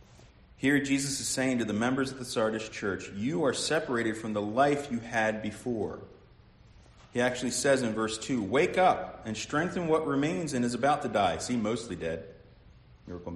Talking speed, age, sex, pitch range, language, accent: 185 wpm, 40-59, male, 100-135 Hz, English, American